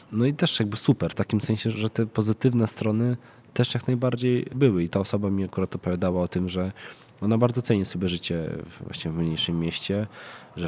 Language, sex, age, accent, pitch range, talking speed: Polish, male, 20-39, native, 85-110 Hz, 195 wpm